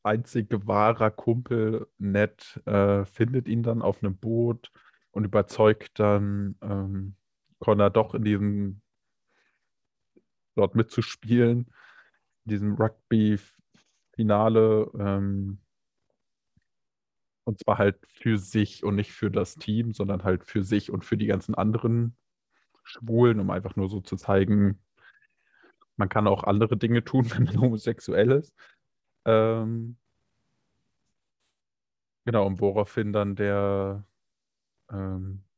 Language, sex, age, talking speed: German, male, 20-39, 115 wpm